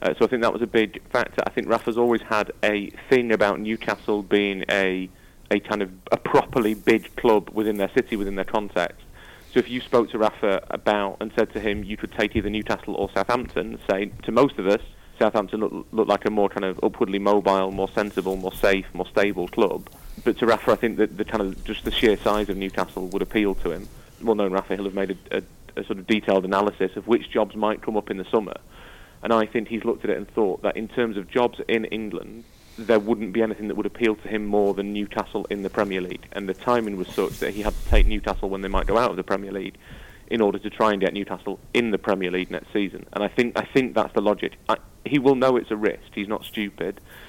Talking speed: 250 wpm